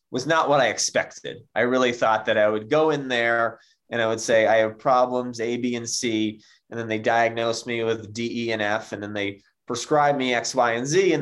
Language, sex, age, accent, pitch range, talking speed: English, male, 20-39, American, 115-155 Hz, 240 wpm